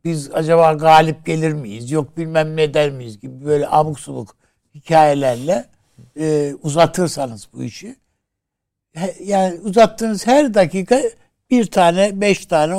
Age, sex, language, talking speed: 60-79, male, Turkish, 125 wpm